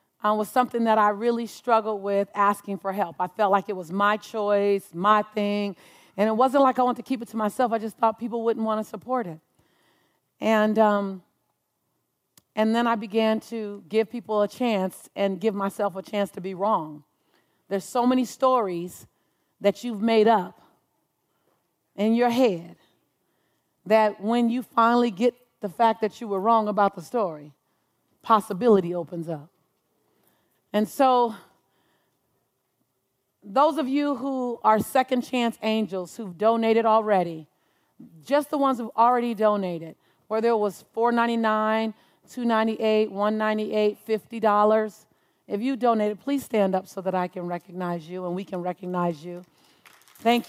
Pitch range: 195-235 Hz